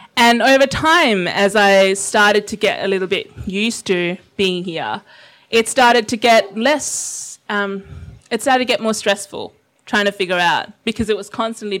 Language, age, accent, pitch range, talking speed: English, 20-39, Australian, 180-225 Hz, 180 wpm